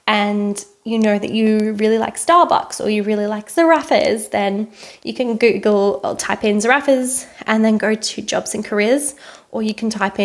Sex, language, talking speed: female, English, 185 wpm